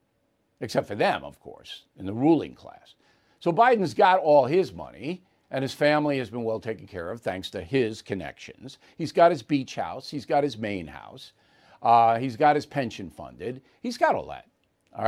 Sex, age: male, 60-79